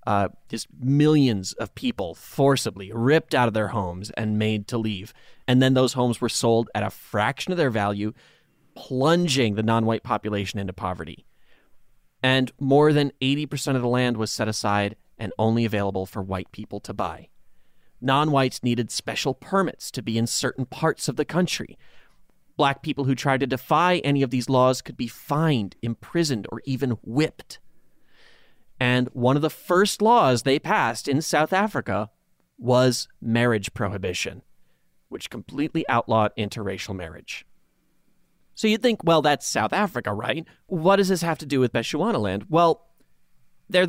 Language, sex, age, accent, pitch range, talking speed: English, male, 30-49, American, 110-150 Hz, 160 wpm